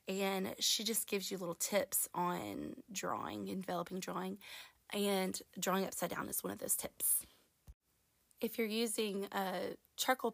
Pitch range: 175-205 Hz